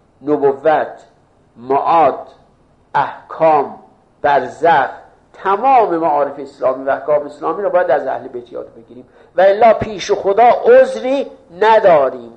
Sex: male